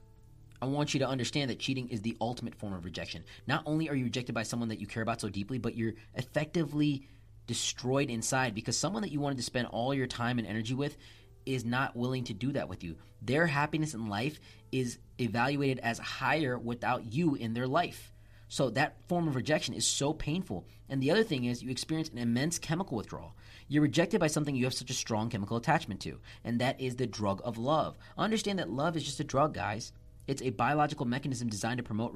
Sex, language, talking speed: male, English, 220 wpm